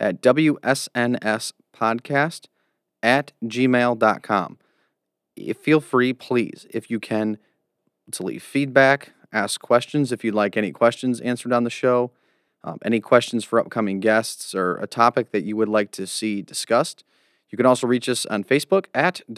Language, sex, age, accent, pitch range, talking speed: English, male, 30-49, American, 110-125 Hz, 150 wpm